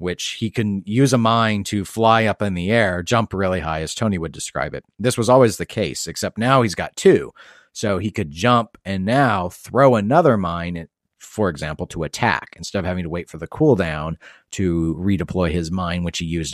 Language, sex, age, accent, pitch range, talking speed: English, male, 40-59, American, 85-110 Hz, 210 wpm